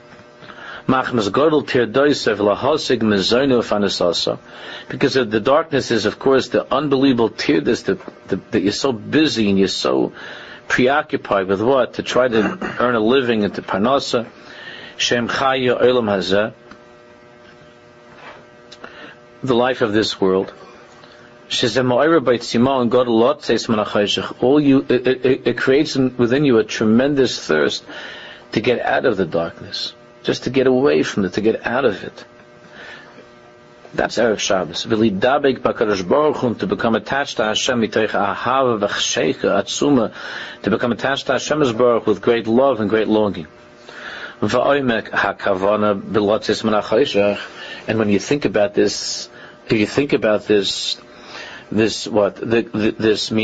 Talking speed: 105 wpm